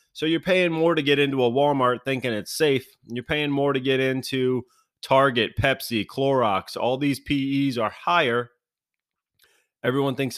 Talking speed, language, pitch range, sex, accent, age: 160 wpm, English, 110-135 Hz, male, American, 30-49